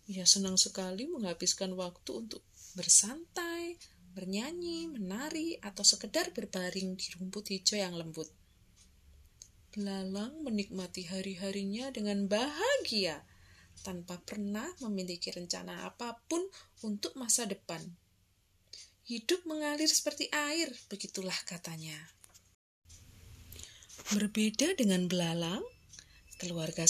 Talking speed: 90 wpm